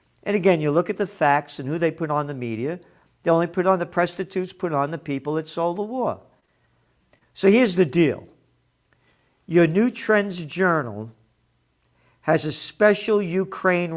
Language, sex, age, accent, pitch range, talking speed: English, male, 50-69, American, 155-215 Hz, 170 wpm